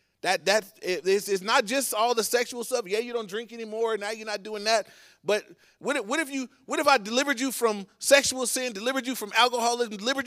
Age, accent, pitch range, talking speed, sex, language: 30-49, American, 180-235 Hz, 230 wpm, male, English